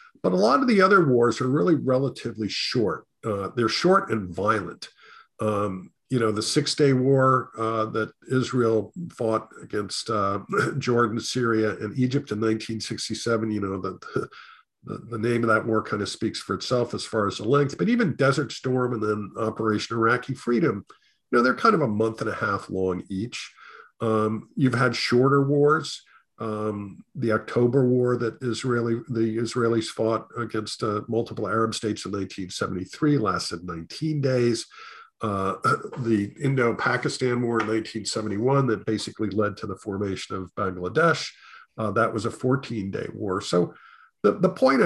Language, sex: English, male